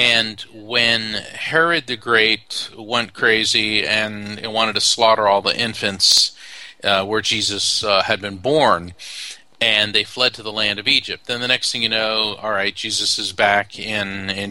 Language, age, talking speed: English, 40-59, 175 wpm